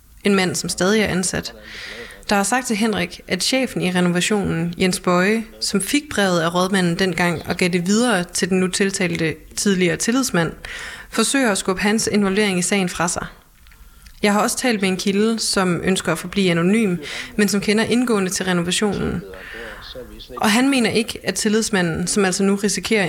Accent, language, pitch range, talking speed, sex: native, Danish, 180-215 Hz, 180 wpm, female